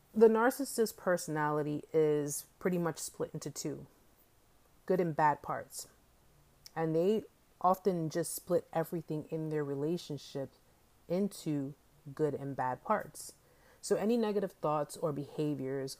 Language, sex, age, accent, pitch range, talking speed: English, female, 30-49, American, 145-170 Hz, 125 wpm